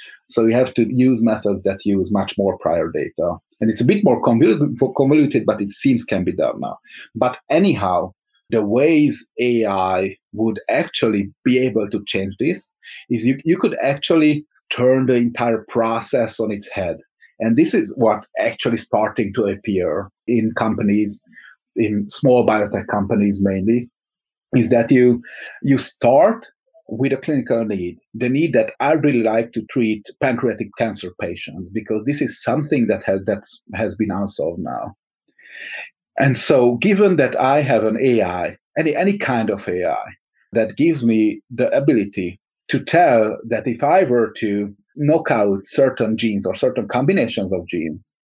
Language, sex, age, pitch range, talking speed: English, male, 30-49, 105-135 Hz, 160 wpm